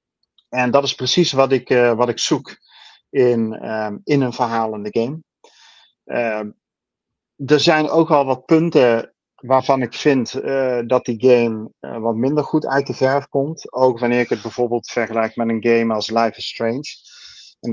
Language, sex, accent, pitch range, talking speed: Dutch, male, Dutch, 115-130 Hz, 175 wpm